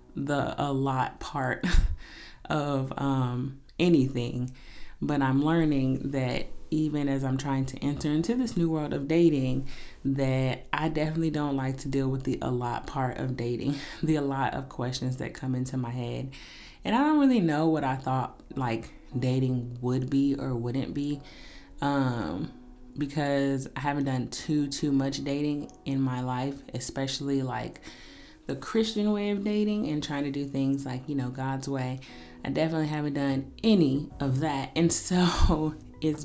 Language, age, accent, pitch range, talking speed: English, 30-49, American, 130-150 Hz, 165 wpm